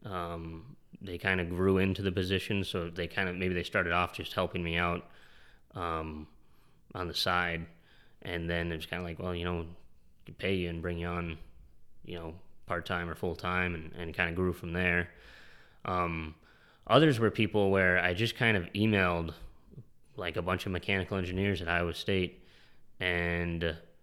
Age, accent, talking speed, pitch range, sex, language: 20-39, American, 180 wpm, 85-100 Hz, male, English